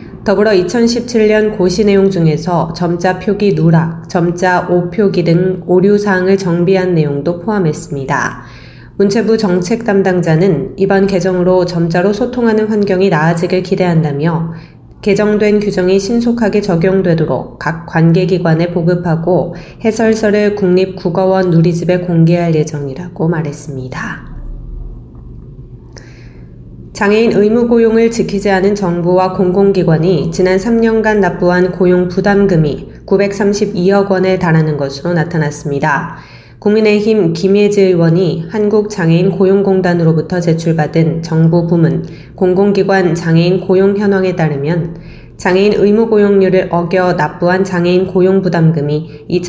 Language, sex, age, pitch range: Korean, female, 20-39, 170-200 Hz